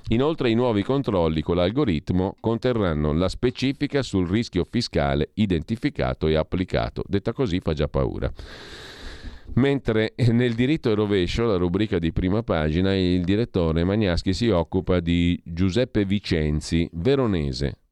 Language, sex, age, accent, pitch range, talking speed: Italian, male, 40-59, native, 85-110 Hz, 130 wpm